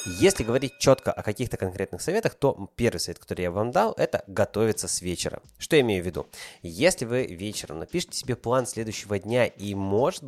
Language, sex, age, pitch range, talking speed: Russian, male, 20-39, 95-125 Hz, 195 wpm